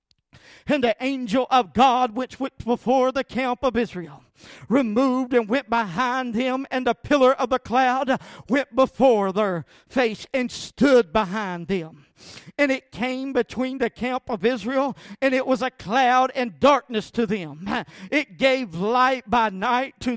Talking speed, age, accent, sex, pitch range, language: 160 wpm, 50-69, American, male, 225-260 Hz, English